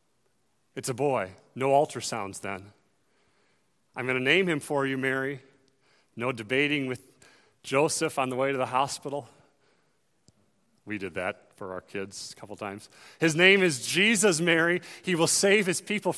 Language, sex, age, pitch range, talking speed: English, male, 40-59, 145-195 Hz, 160 wpm